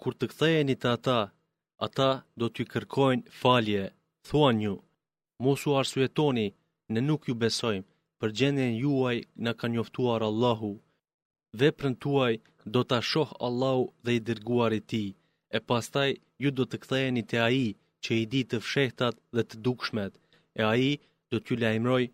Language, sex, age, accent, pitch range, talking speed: Greek, male, 30-49, Turkish, 115-135 Hz, 160 wpm